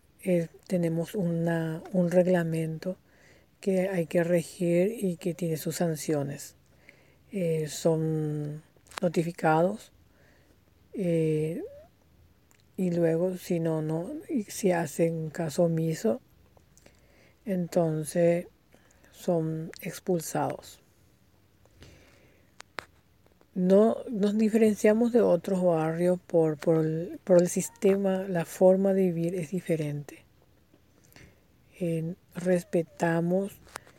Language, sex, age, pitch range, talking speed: Spanish, female, 50-69, 160-185 Hz, 90 wpm